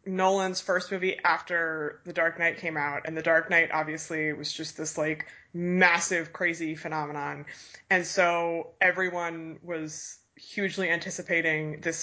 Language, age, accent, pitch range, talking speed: English, 20-39, American, 160-185 Hz, 140 wpm